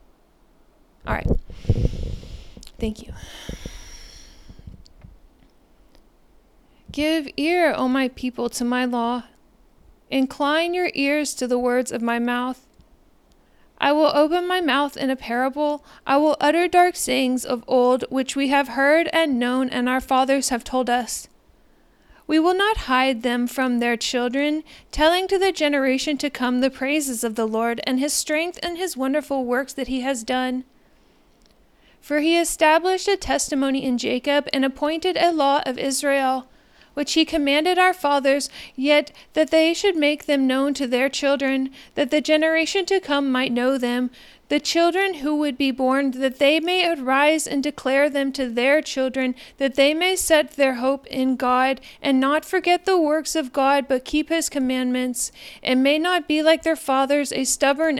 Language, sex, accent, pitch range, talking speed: English, female, American, 255-310 Hz, 165 wpm